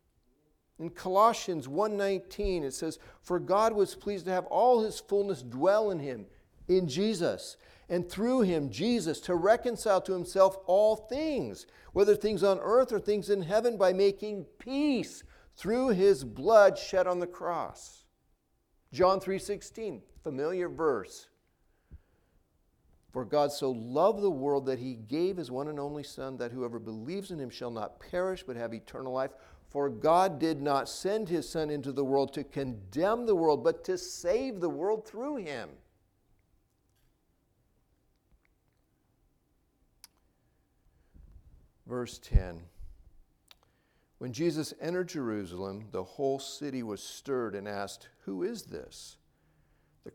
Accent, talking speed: American, 140 wpm